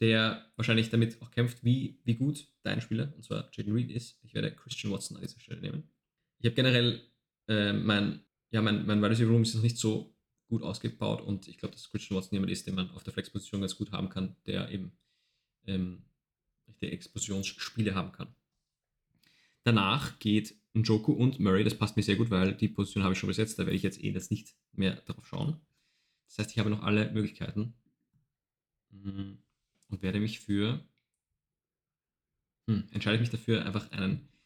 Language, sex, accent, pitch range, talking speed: German, male, German, 105-120 Hz, 190 wpm